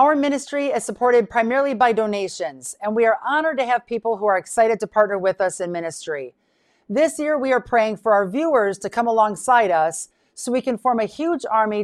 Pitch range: 200-255 Hz